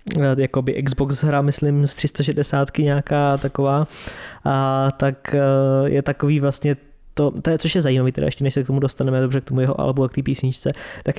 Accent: native